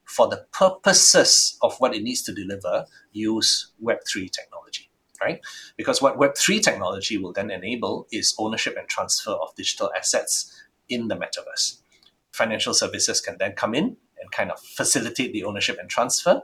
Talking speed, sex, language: 160 wpm, male, English